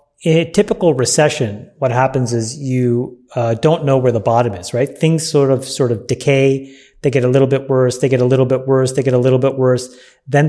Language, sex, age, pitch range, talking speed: English, male, 30-49, 125-145 Hz, 235 wpm